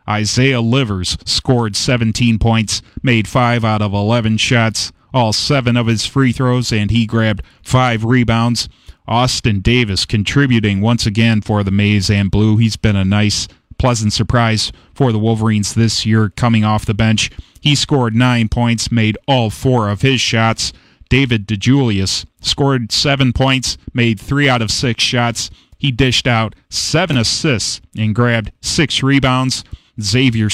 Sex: male